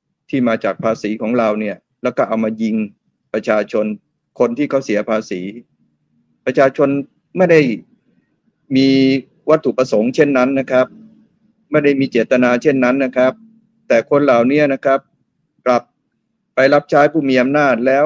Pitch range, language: 125-155 Hz, Thai